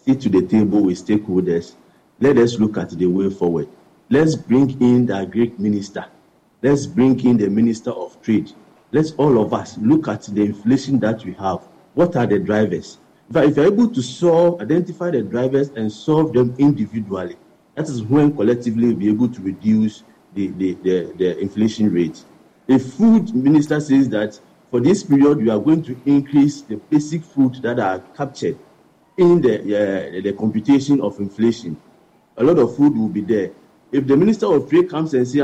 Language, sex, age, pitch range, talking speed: English, male, 50-69, 110-160 Hz, 185 wpm